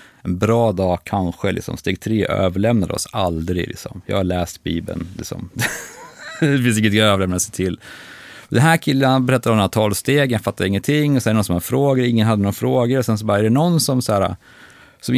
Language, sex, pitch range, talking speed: Swedish, male, 100-130 Hz, 225 wpm